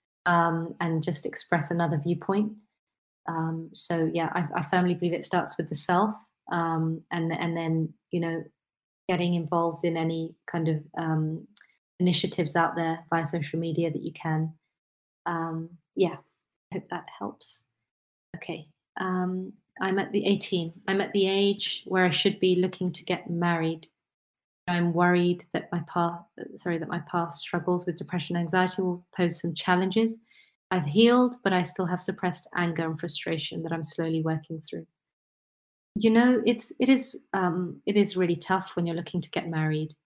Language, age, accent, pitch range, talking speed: English, 30-49, British, 165-185 Hz, 170 wpm